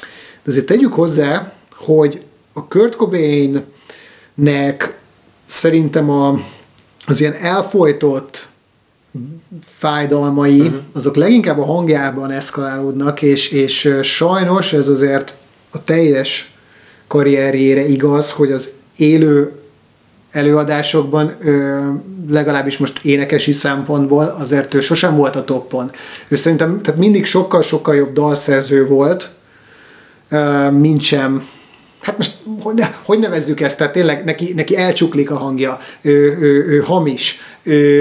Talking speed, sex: 110 wpm, male